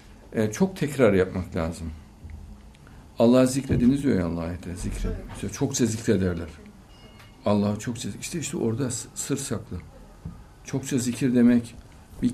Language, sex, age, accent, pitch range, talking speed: Turkish, male, 60-79, native, 85-125 Hz, 115 wpm